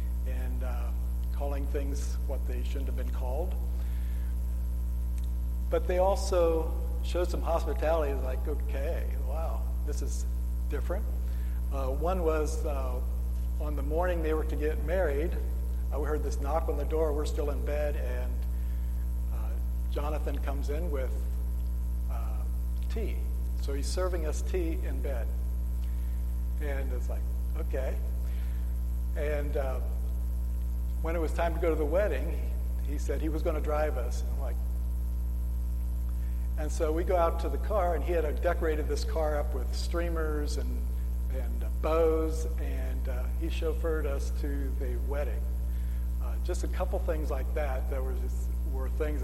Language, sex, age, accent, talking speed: English, male, 60-79, American, 150 wpm